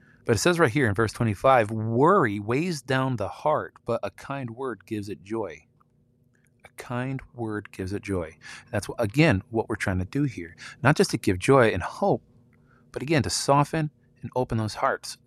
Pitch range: 100-125 Hz